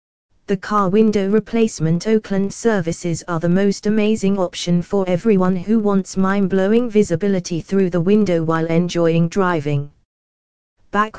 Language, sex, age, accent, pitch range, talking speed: English, female, 20-39, British, 165-210 Hz, 130 wpm